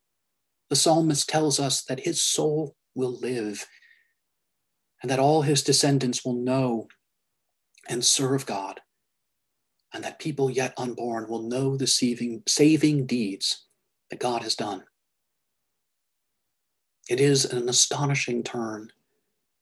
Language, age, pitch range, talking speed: English, 40-59, 125-155 Hz, 115 wpm